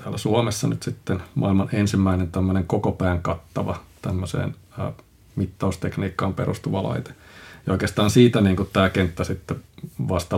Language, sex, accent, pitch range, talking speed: Finnish, male, native, 90-105 Hz, 125 wpm